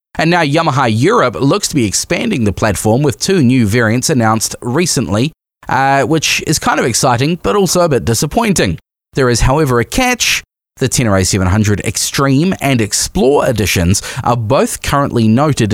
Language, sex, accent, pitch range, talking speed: English, male, Australian, 100-140 Hz, 165 wpm